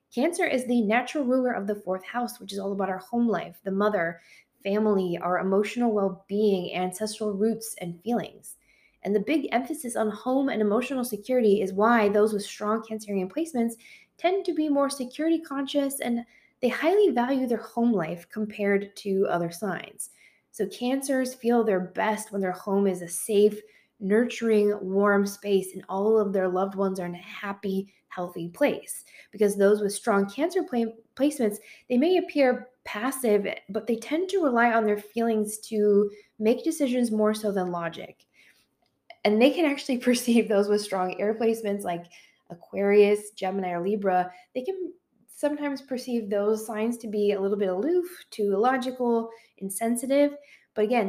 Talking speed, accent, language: 165 wpm, American, English